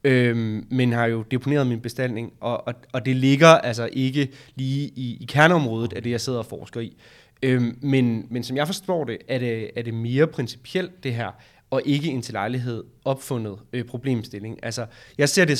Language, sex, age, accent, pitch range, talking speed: Danish, male, 20-39, native, 120-150 Hz, 195 wpm